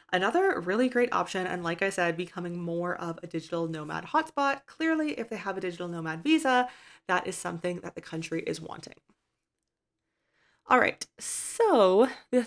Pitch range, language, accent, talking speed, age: 165-230 Hz, English, American, 170 wpm, 20-39